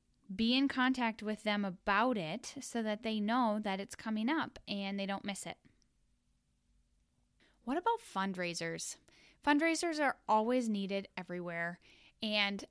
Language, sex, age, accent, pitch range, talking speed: English, female, 10-29, American, 185-230 Hz, 135 wpm